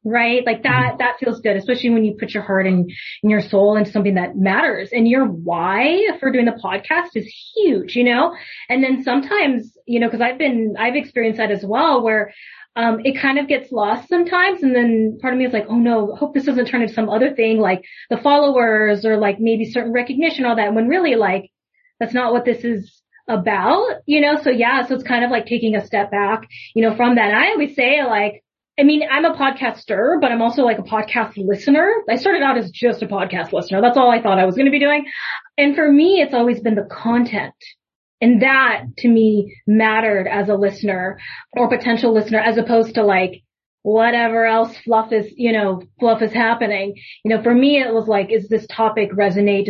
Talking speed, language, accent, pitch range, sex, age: 220 wpm, English, American, 210-250 Hz, female, 20-39